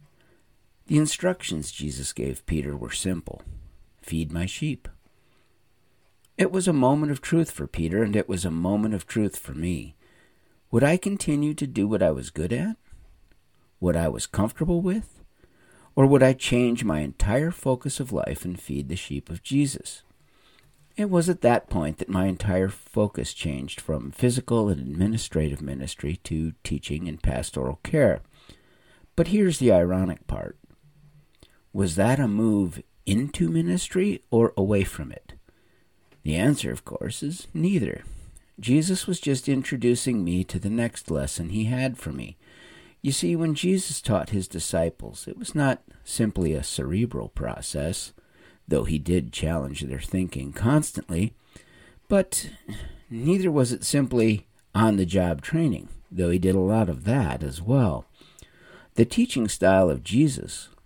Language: English